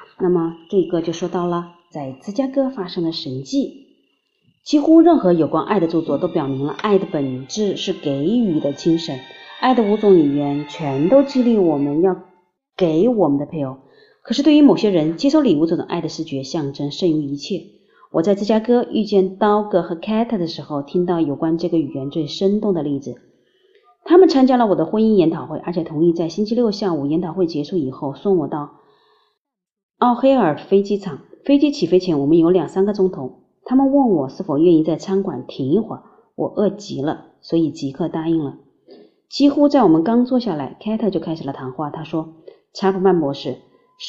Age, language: 30-49, Chinese